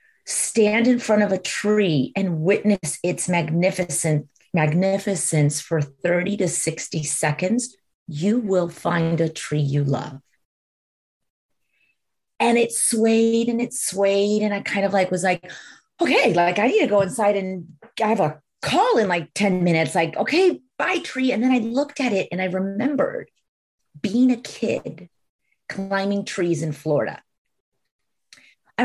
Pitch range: 155-205 Hz